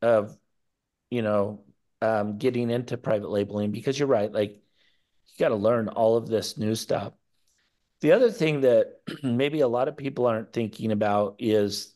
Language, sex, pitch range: English, male, 105-125 Hz